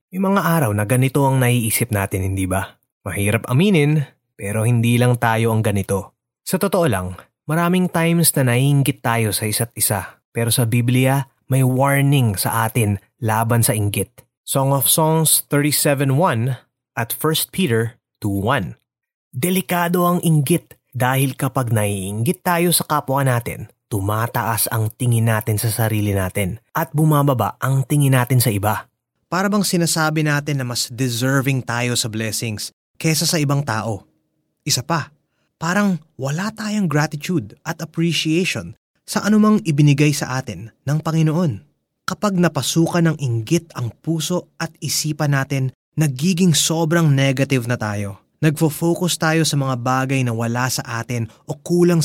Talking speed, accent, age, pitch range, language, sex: 145 wpm, native, 20-39, 115-160 Hz, Filipino, male